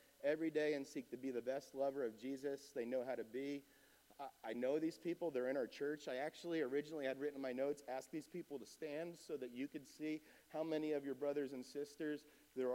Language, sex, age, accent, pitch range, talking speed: English, male, 40-59, American, 110-155 Hz, 240 wpm